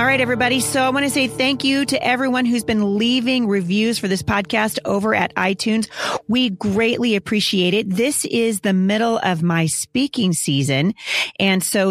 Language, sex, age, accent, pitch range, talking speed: English, female, 40-59, American, 180-220 Hz, 180 wpm